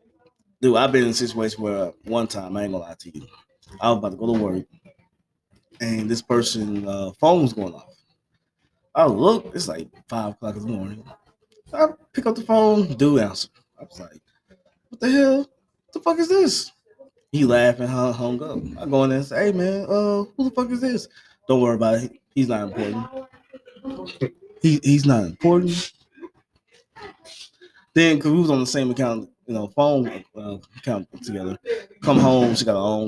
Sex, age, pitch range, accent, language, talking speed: male, 20-39, 105-170 Hz, American, English, 190 wpm